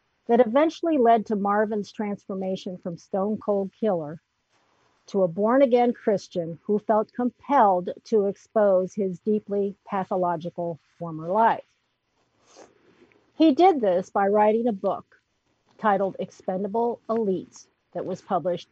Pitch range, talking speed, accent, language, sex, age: 185-240 Hz, 115 wpm, American, English, female, 50-69